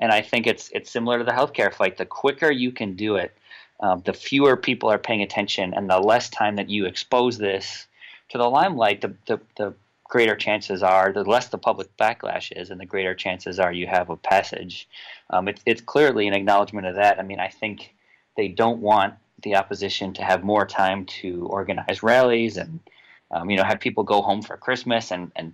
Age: 30-49